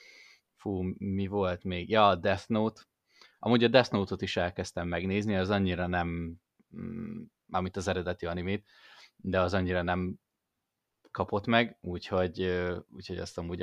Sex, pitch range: male, 90-105 Hz